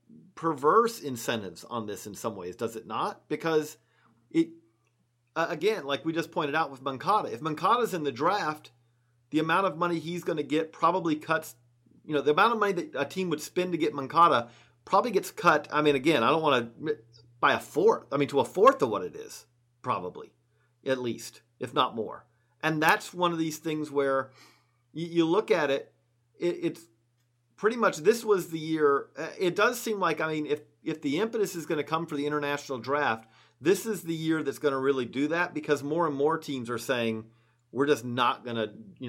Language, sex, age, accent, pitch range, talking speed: English, male, 40-59, American, 120-165 Hz, 215 wpm